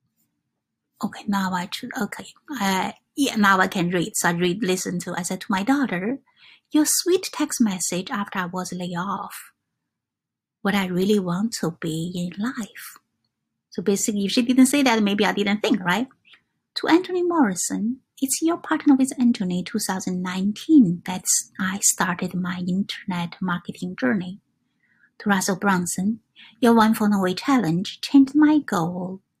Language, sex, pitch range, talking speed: English, female, 180-245 Hz, 160 wpm